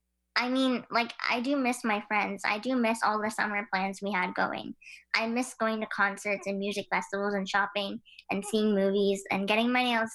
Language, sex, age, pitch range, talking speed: English, male, 10-29, 190-230 Hz, 205 wpm